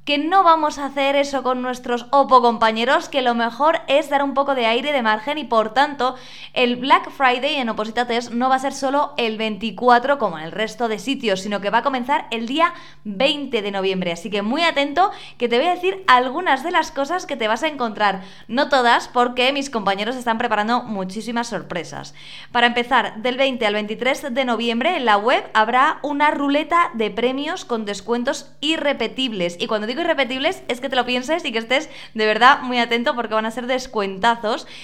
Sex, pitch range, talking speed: female, 215-280 Hz, 205 wpm